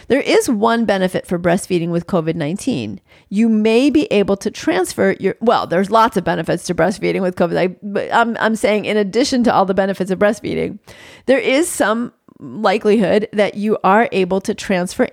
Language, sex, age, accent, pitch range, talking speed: English, female, 40-59, American, 180-230 Hz, 185 wpm